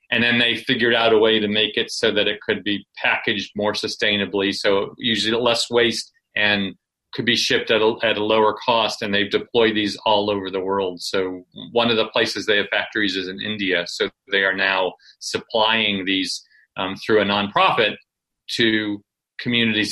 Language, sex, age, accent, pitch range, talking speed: English, male, 40-59, American, 100-115 Hz, 190 wpm